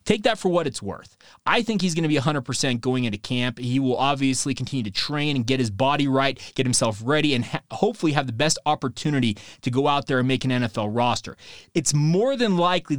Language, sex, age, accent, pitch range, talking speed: English, male, 20-39, American, 130-155 Hz, 225 wpm